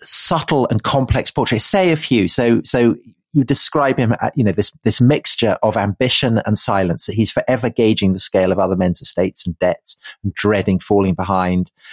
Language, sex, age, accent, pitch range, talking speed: English, male, 40-59, British, 105-150 Hz, 195 wpm